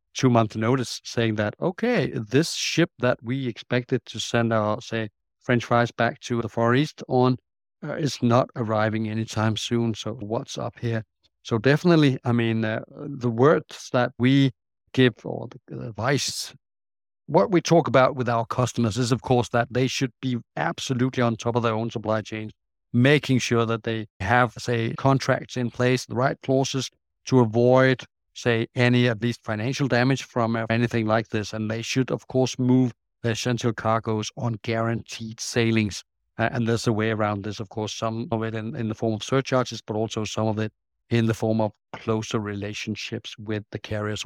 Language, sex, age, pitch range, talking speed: English, male, 50-69, 110-125 Hz, 185 wpm